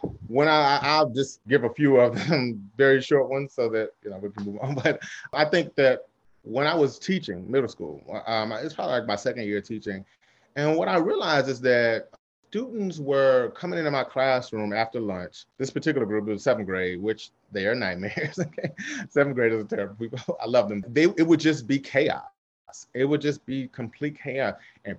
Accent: American